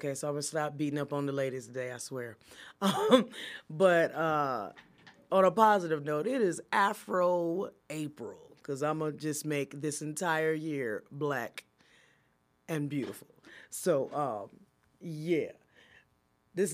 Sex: female